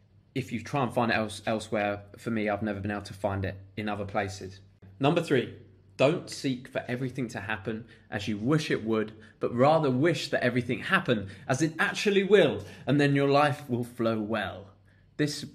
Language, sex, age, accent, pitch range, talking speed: English, male, 20-39, British, 110-135 Hz, 195 wpm